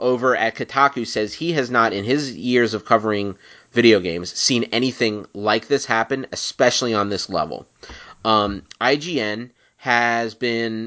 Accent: American